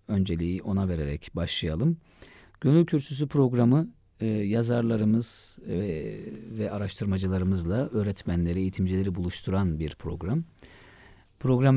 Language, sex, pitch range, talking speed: Turkish, male, 85-110 Hz, 80 wpm